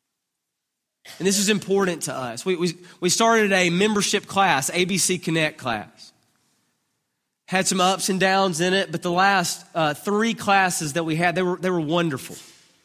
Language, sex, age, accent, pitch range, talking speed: English, male, 30-49, American, 150-190 Hz, 175 wpm